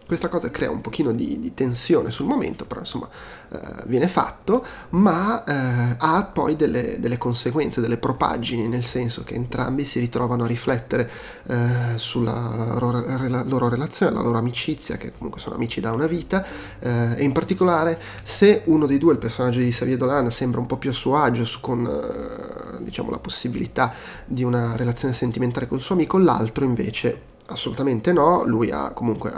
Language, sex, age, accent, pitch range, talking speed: Italian, male, 30-49, native, 120-140 Hz, 180 wpm